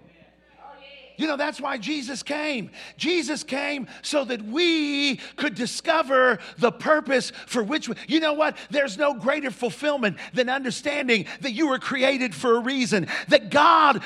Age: 50-69